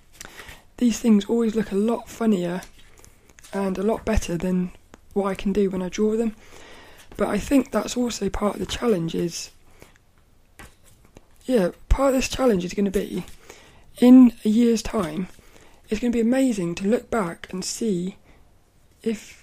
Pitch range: 180-230 Hz